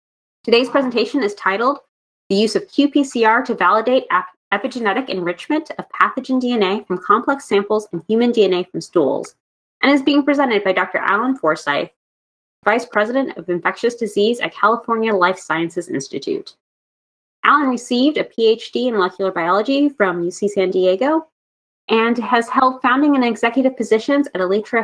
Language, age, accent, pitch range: English, 20-39, American, 185-255 Hz